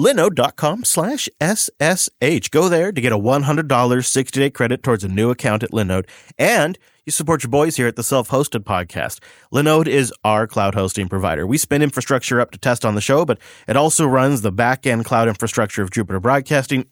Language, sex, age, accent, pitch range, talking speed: English, male, 30-49, American, 110-145 Hz, 190 wpm